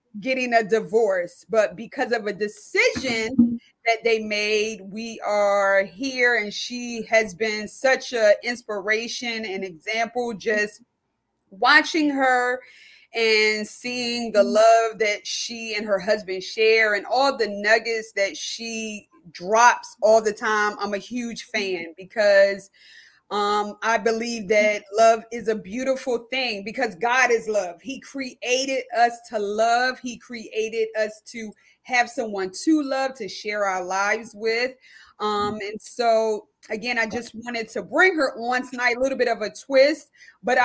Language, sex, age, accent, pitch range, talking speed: English, female, 20-39, American, 215-250 Hz, 150 wpm